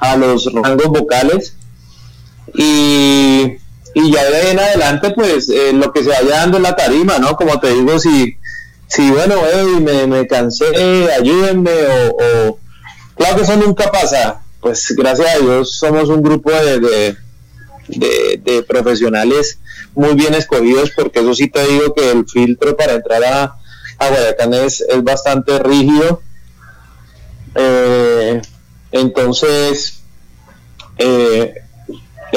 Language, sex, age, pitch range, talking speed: English, male, 30-49, 120-155 Hz, 140 wpm